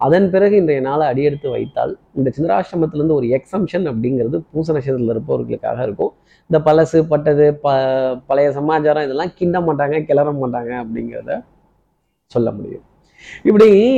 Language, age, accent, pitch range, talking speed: Tamil, 20-39, native, 135-180 Hz, 130 wpm